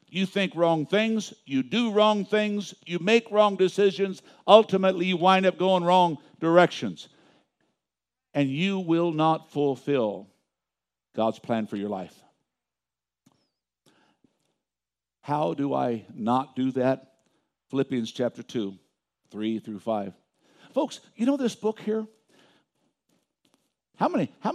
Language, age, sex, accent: English, 60-79, male, American